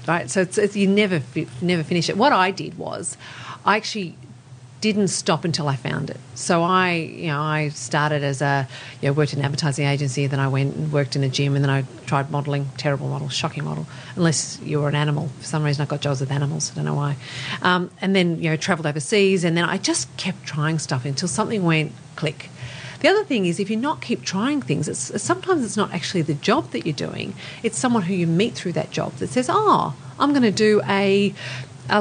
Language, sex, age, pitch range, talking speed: English, female, 40-59, 140-195 Hz, 235 wpm